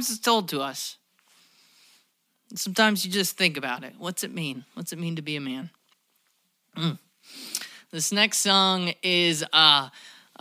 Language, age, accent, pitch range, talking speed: English, 30-49, American, 135-165 Hz, 155 wpm